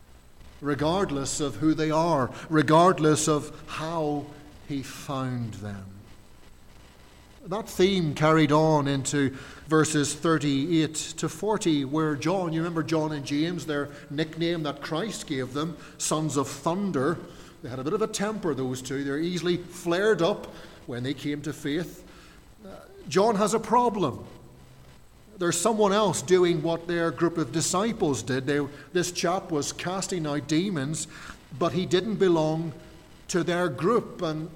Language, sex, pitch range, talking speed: English, male, 145-180 Hz, 140 wpm